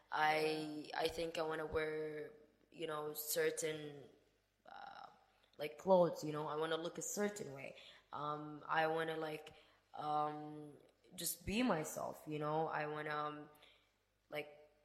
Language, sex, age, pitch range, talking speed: English, female, 20-39, 150-175 Hz, 155 wpm